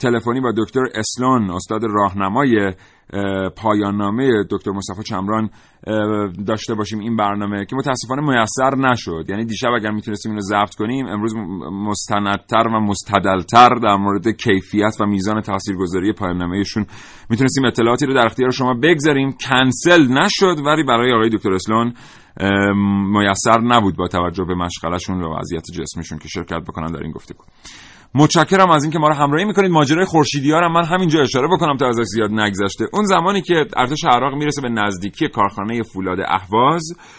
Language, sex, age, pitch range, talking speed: Persian, male, 30-49, 100-140 Hz, 160 wpm